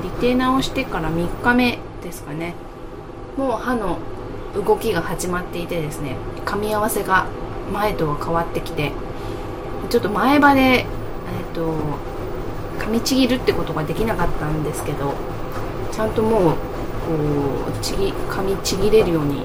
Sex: female